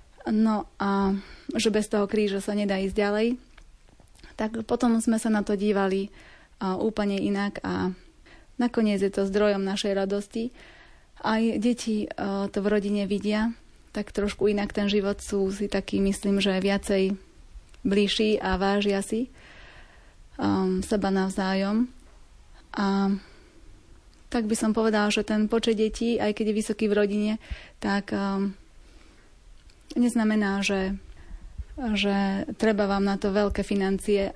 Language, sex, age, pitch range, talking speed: Slovak, female, 30-49, 195-220 Hz, 130 wpm